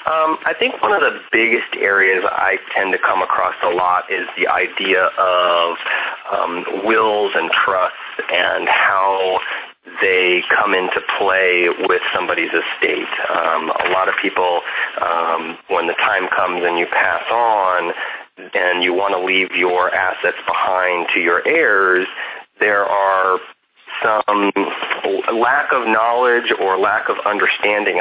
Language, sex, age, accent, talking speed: English, male, 30-49, American, 145 wpm